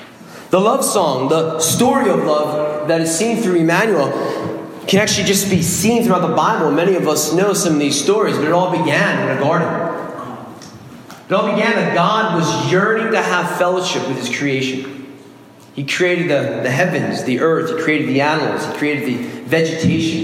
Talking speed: 185 wpm